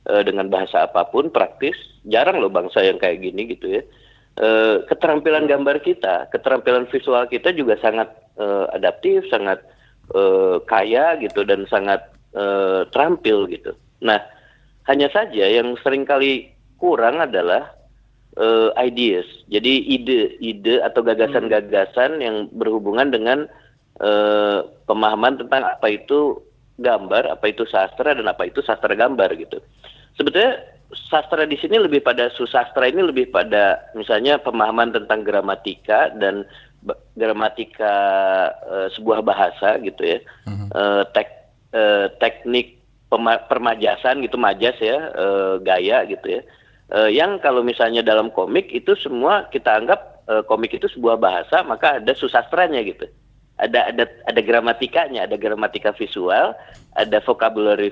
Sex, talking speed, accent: male, 130 wpm, native